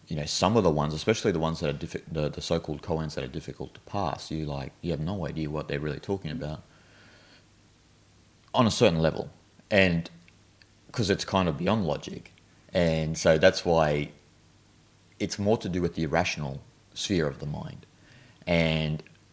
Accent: Australian